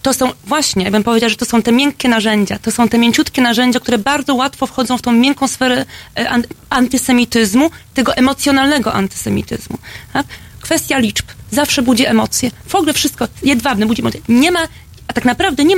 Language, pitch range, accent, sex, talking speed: Polish, 225-275 Hz, native, female, 180 wpm